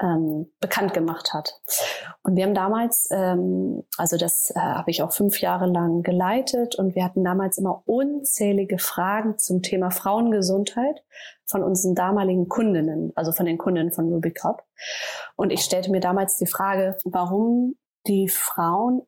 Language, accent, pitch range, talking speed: German, German, 175-210 Hz, 155 wpm